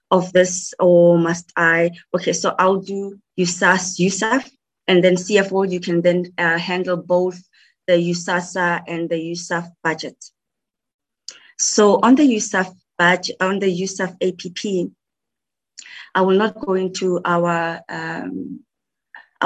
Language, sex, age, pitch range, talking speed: English, female, 20-39, 175-200 Hz, 130 wpm